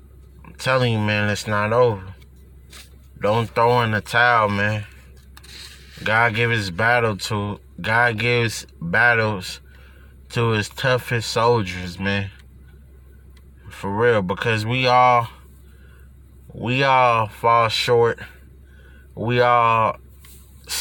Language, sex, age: English, male, 20-39